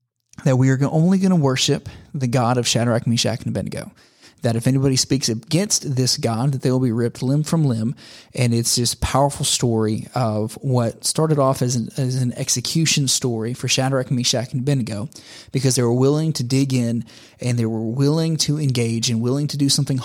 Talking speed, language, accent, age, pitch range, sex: 200 wpm, English, American, 30-49, 120-140 Hz, male